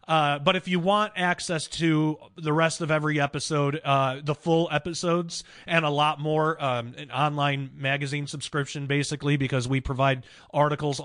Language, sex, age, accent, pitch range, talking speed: English, male, 30-49, American, 135-170 Hz, 165 wpm